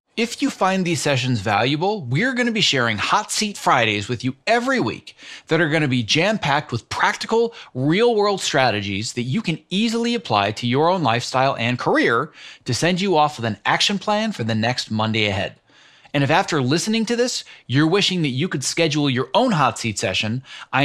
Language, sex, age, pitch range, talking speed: English, male, 30-49, 120-190 Hz, 200 wpm